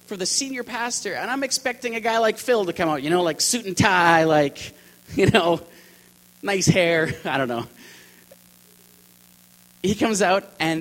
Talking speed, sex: 180 wpm, male